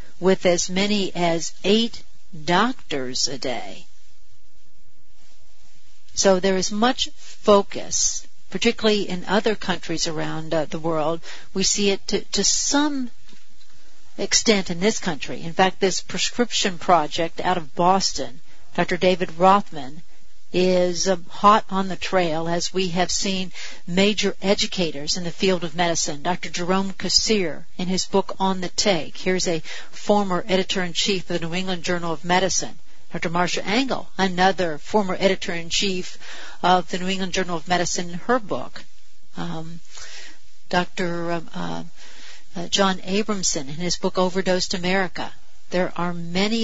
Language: English